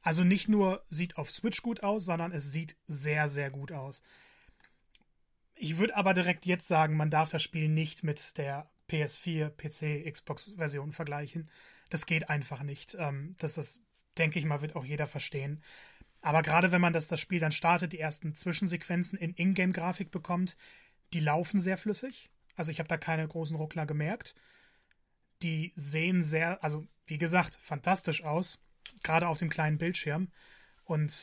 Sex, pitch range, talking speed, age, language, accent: male, 155-180 Hz, 165 wpm, 30-49, German, German